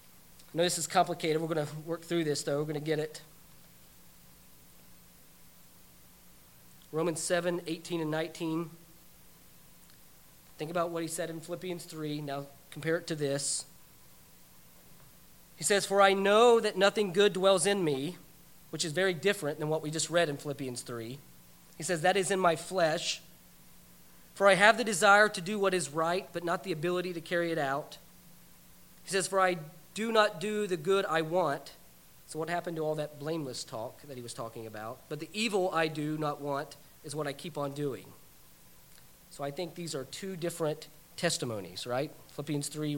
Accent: American